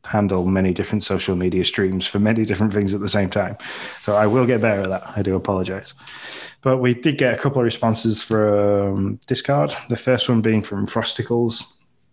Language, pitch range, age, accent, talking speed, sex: English, 95-115 Hz, 20-39, British, 200 wpm, male